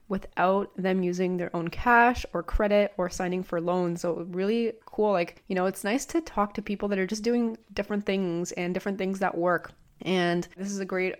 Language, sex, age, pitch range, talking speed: English, female, 20-39, 170-200 Hz, 215 wpm